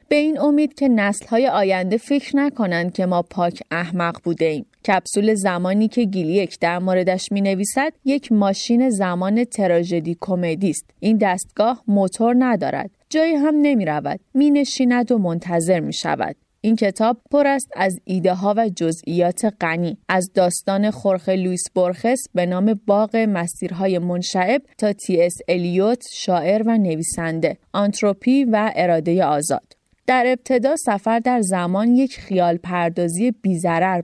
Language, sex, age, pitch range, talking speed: Persian, female, 30-49, 180-245 Hz, 145 wpm